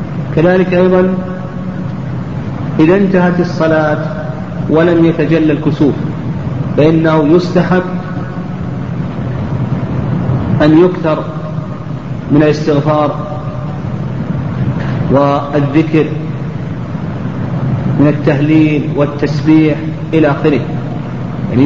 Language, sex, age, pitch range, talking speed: Arabic, male, 40-59, 145-165 Hz, 60 wpm